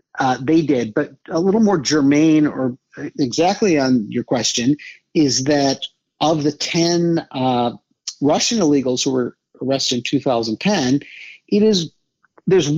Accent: American